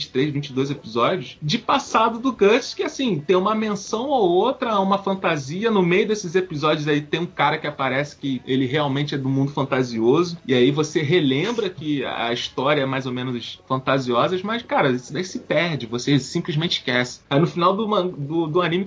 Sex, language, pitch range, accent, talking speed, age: male, Portuguese, 130-195 Hz, Brazilian, 195 wpm, 20-39